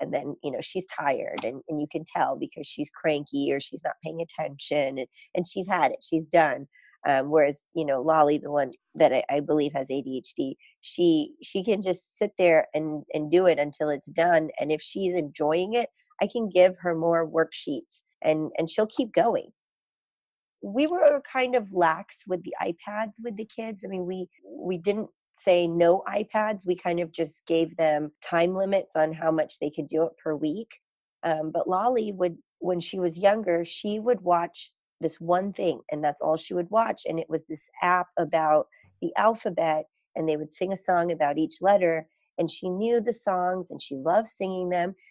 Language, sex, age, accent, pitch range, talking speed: English, female, 30-49, American, 160-210 Hz, 200 wpm